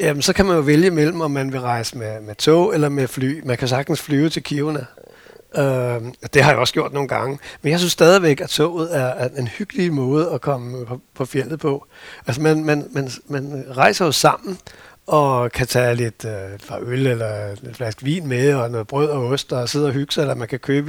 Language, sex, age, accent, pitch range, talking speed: Danish, male, 60-79, native, 125-160 Hz, 230 wpm